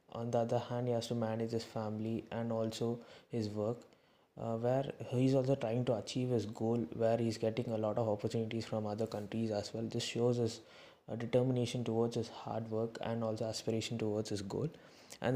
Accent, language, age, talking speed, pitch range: Indian, English, 20-39, 200 wpm, 110-125 Hz